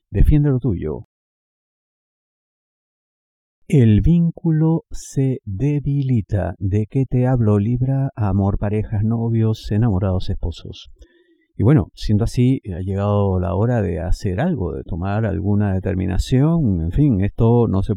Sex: male